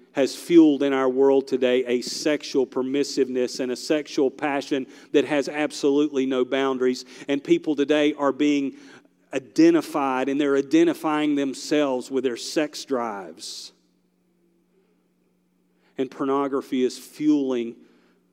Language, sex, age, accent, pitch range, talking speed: English, male, 40-59, American, 120-140 Hz, 120 wpm